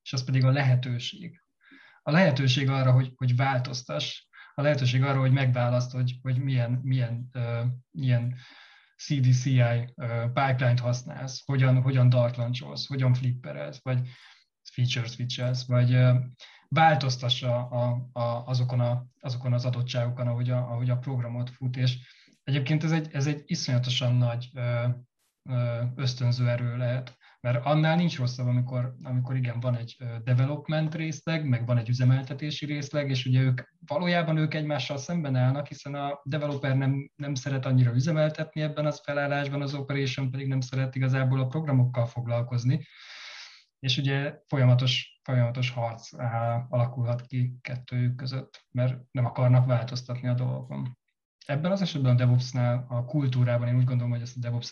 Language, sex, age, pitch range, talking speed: Hungarian, male, 20-39, 125-140 Hz, 150 wpm